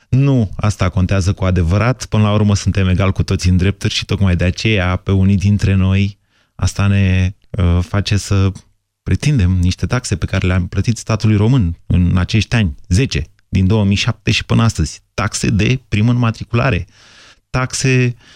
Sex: male